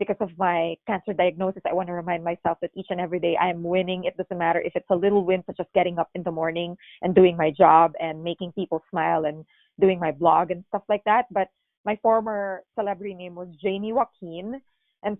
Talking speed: 230 wpm